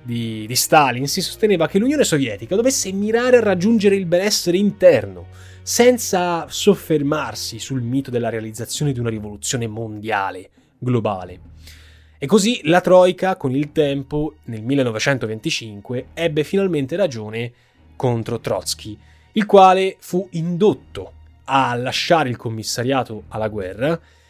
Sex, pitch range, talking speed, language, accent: male, 115-185 Hz, 120 wpm, Italian, native